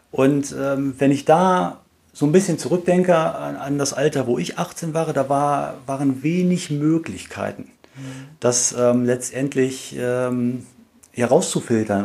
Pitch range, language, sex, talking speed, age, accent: 120-145 Hz, German, male, 135 wpm, 40-59, German